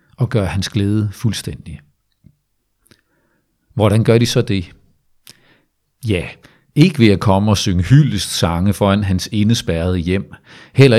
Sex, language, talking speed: male, Danish, 130 wpm